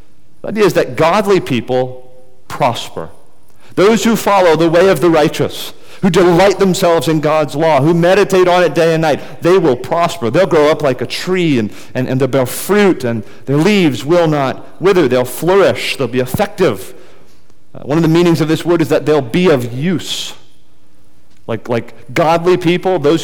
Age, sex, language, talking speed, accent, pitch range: 40-59, male, English, 190 wpm, American, 130-170 Hz